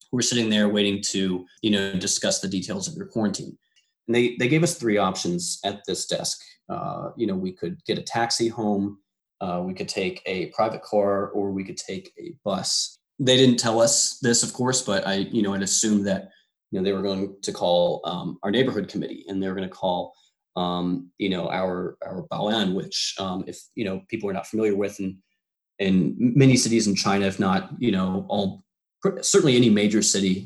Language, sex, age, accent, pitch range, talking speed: English, male, 20-39, American, 95-120 Hz, 215 wpm